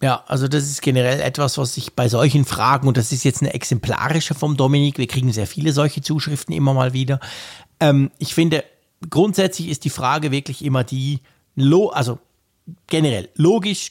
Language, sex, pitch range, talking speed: German, male, 130-165 Hz, 175 wpm